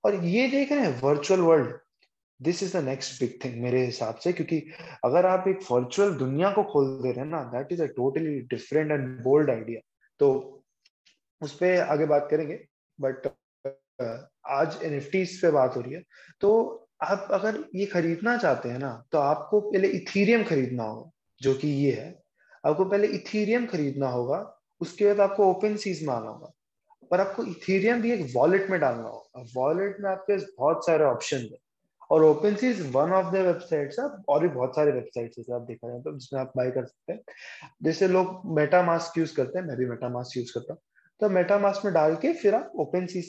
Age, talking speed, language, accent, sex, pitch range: 20-39, 145 wpm, Hindi, native, male, 135-195 Hz